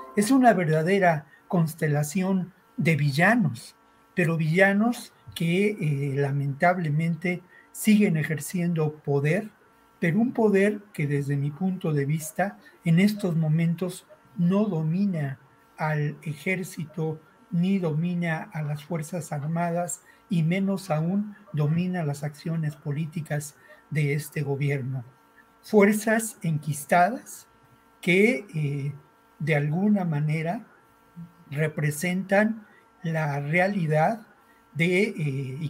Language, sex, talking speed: Spanish, male, 95 wpm